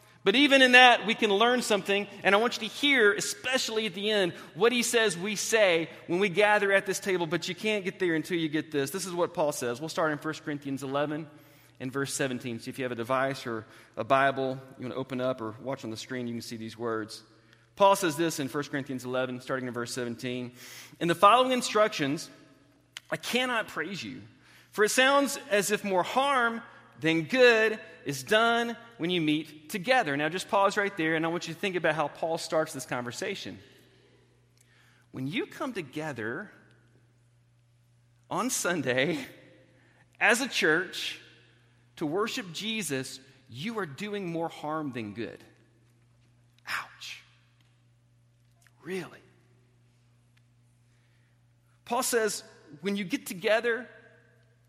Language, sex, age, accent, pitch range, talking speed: English, male, 30-49, American, 120-205 Hz, 170 wpm